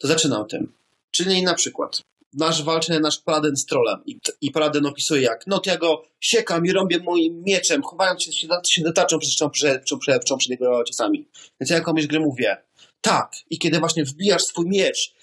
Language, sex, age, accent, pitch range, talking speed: Polish, male, 30-49, native, 155-190 Hz, 190 wpm